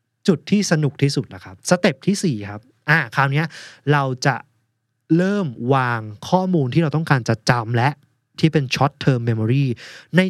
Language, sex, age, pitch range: Thai, male, 20-39, 115-155 Hz